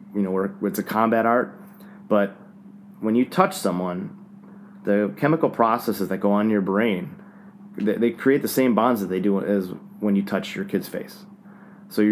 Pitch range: 100-135 Hz